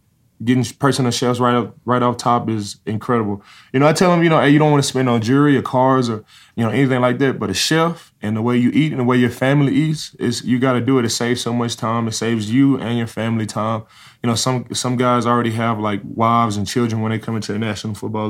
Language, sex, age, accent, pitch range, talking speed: English, male, 20-39, American, 110-130 Hz, 275 wpm